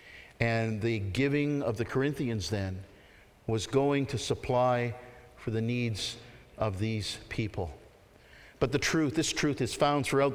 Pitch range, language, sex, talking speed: 125-155 Hz, English, male, 145 wpm